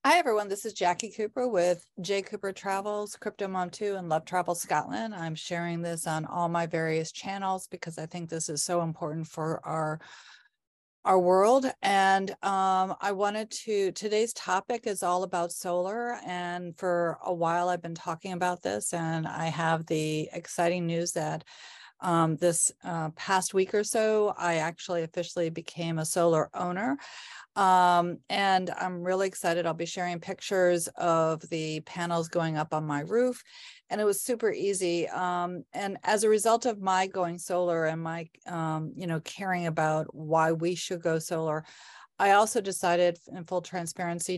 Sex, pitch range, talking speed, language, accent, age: female, 165-195 Hz, 170 wpm, English, American, 40-59